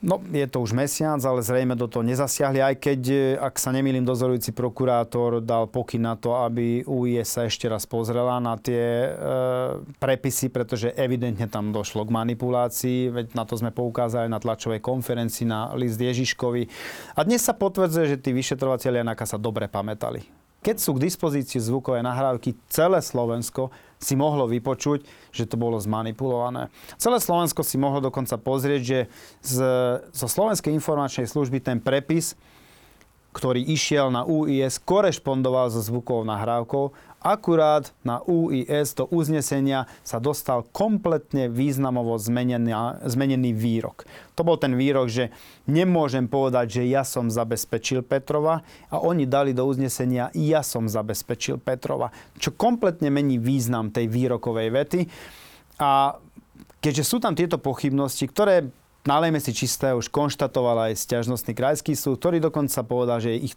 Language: Slovak